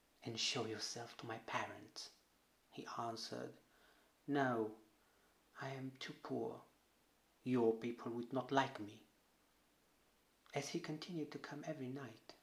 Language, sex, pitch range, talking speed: Romanian, male, 115-135 Hz, 125 wpm